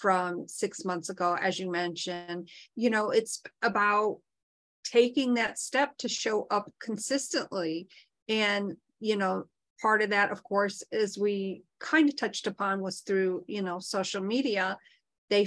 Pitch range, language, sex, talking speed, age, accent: 185-230 Hz, English, female, 150 wpm, 50-69, American